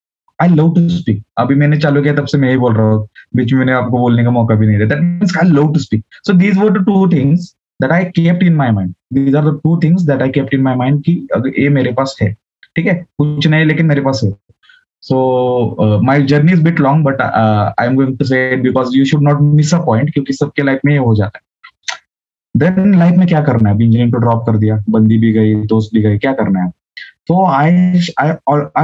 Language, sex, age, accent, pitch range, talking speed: English, male, 20-39, Indian, 115-155 Hz, 135 wpm